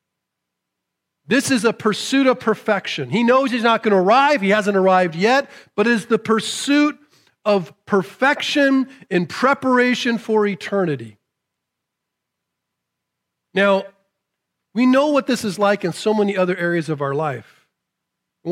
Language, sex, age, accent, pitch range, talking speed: English, male, 40-59, American, 195-270 Hz, 140 wpm